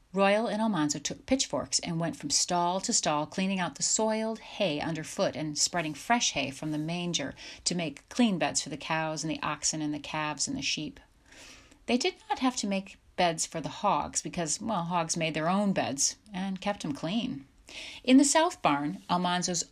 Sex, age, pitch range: female, 40-59, 160-200 Hz